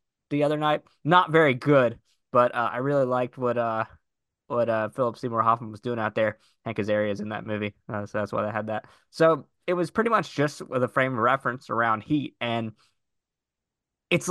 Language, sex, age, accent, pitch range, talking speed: English, male, 20-39, American, 110-130 Hz, 205 wpm